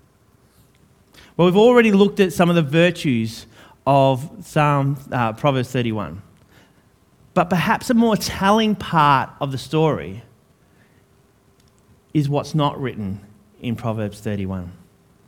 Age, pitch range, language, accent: 30-49, 120-175 Hz, English, Australian